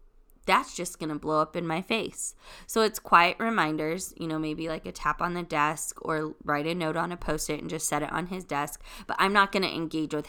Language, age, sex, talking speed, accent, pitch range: English, 20-39, female, 250 wpm, American, 150-195 Hz